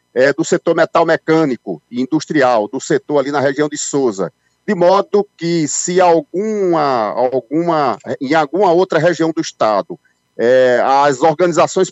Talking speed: 125 wpm